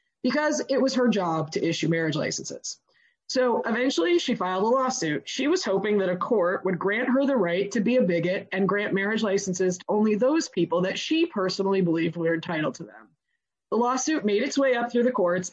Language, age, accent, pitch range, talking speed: English, 20-39, American, 180-255 Hz, 210 wpm